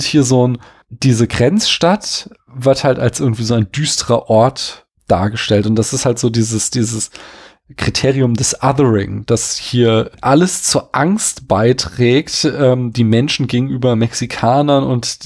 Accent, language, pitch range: German, German, 115-140 Hz